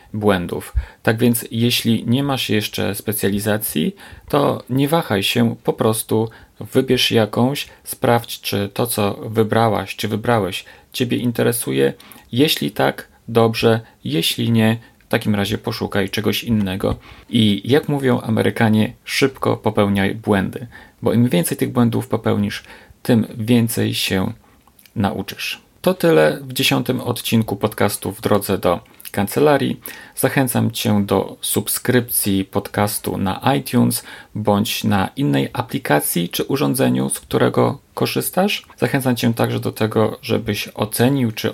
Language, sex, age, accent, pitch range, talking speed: Polish, male, 40-59, native, 100-120 Hz, 125 wpm